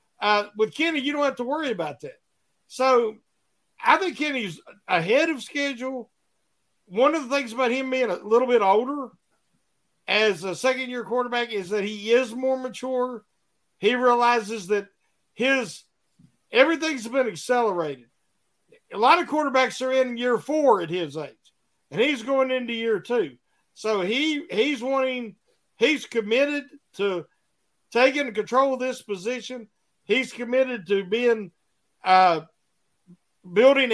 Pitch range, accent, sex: 205-265 Hz, American, male